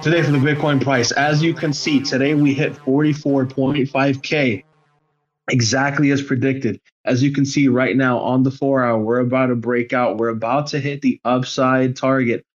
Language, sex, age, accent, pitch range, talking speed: English, male, 20-39, American, 125-145 Hz, 185 wpm